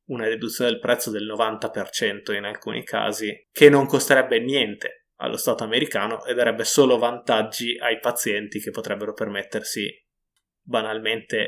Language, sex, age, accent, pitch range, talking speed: Italian, male, 20-39, native, 115-155 Hz, 135 wpm